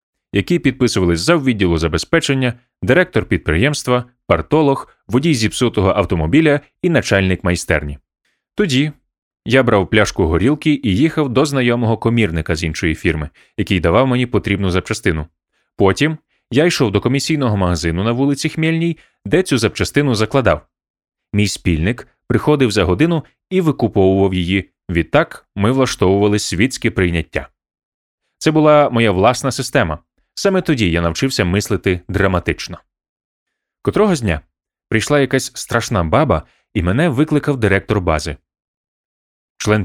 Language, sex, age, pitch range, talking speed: Ukrainian, male, 30-49, 95-135 Hz, 125 wpm